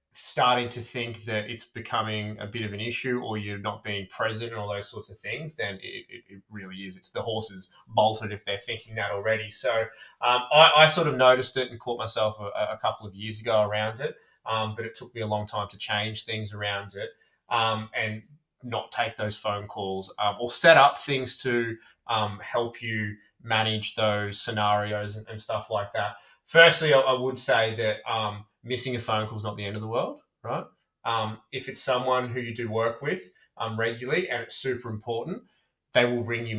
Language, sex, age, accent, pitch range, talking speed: English, male, 20-39, Australian, 105-120 Hz, 215 wpm